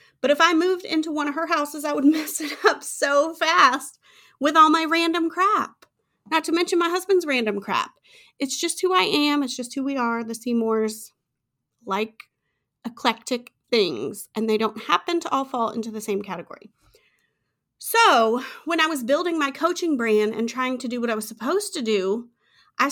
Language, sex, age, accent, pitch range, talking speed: English, female, 30-49, American, 225-330 Hz, 190 wpm